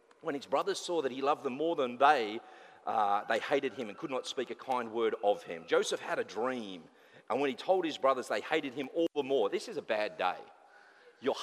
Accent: Australian